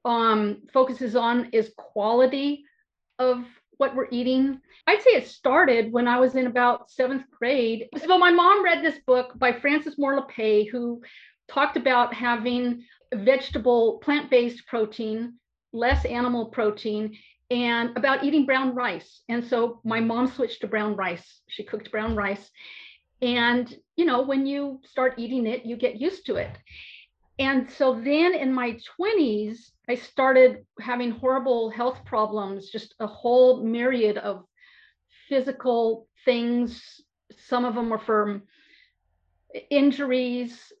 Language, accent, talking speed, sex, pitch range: English, American, 140 wpm, female, 225-270 Hz